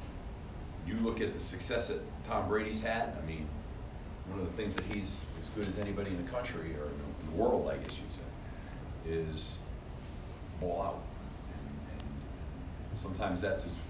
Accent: American